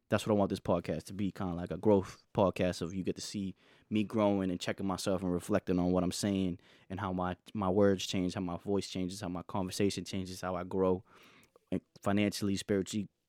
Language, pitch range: English, 95-110 Hz